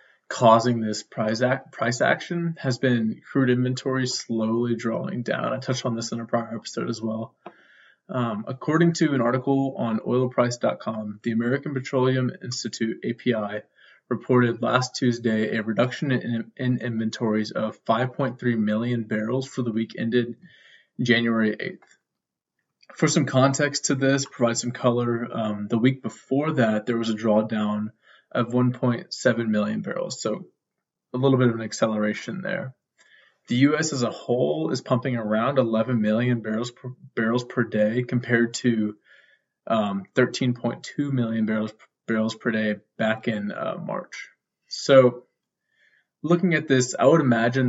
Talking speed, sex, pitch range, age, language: 145 wpm, male, 110-130 Hz, 20-39, English